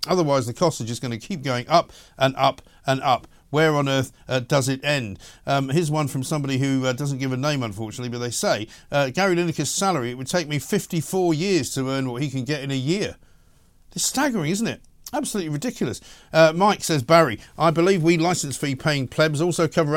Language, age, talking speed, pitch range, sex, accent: English, 50-69, 220 wpm, 130-170 Hz, male, British